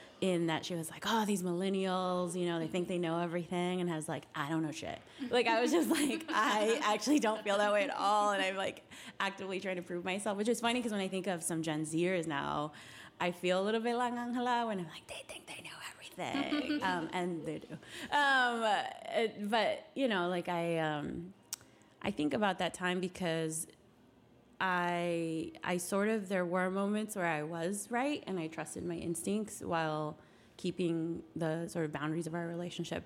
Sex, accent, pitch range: female, American, 165-210 Hz